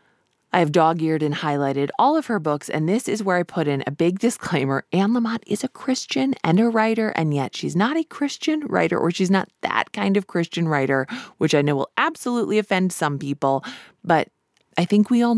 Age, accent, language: 20-39, American, English